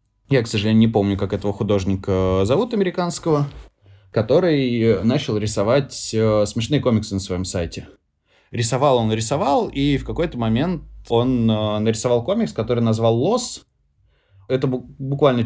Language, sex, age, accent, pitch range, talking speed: Russian, male, 20-39, native, 100-120 Hz, 130 wpm